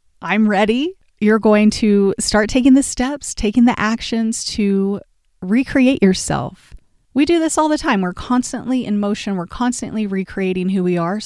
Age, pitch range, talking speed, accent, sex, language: 30-49, 180-235 Hz, 165 wpm, American, female, English